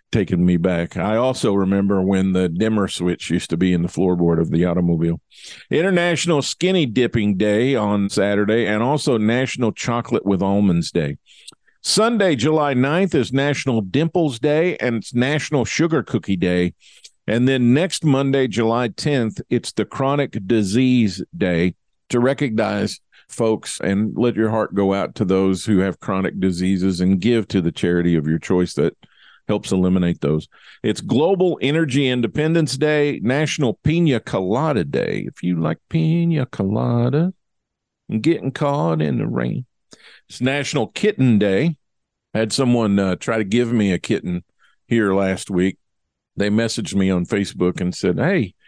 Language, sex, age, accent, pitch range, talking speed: English, male, 50-69, American, 95-135 Hz, 155 wpm